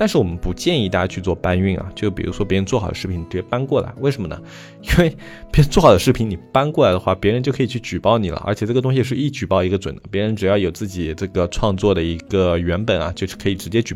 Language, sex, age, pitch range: Chinese, male, 20-39, 95-125 Hz